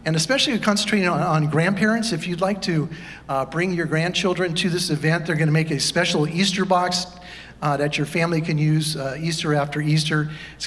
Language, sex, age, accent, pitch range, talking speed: English, male, 50-69, American, 150-175 Hz, 195 wpm